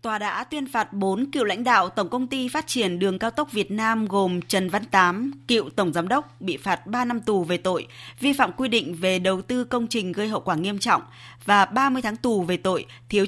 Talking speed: 245 wpm